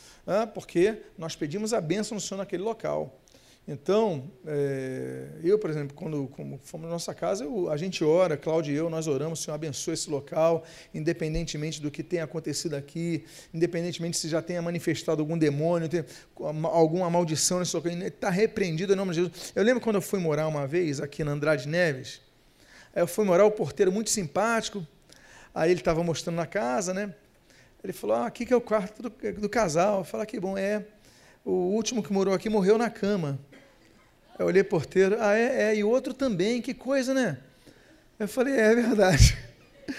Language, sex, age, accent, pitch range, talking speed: Portuguese, male, 40-59, Brazilian, 165-215 Hz, 190 wpm